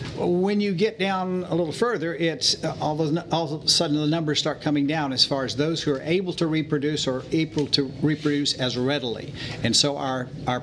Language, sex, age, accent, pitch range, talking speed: English, male, 60-79, American, 140-175 Hz, 220 wpm